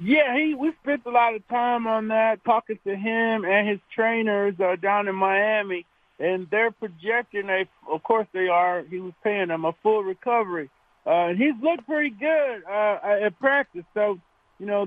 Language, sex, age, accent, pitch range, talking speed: English, male, 50-69, American, 185-230 Hz, 185 wpm